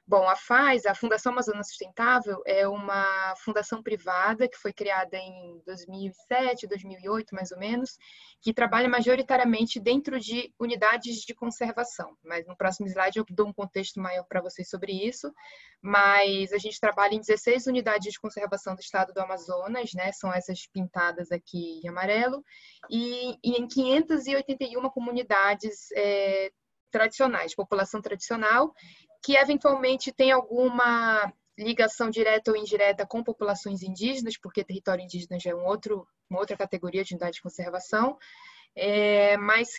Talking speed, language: 140 wpm, Portuguese